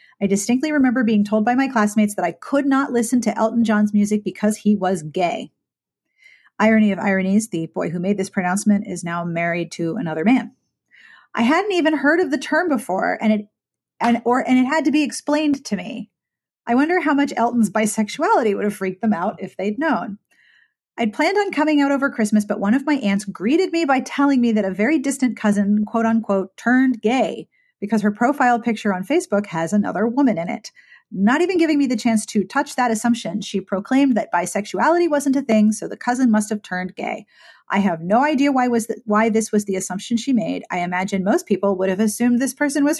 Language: English